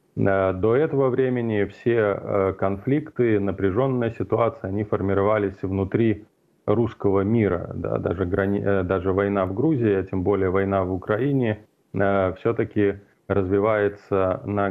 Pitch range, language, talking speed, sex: 100-115 Hz, Russian, 100 wpm, male